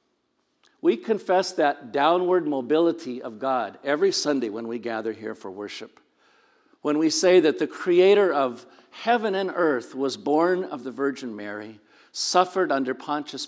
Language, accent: English, American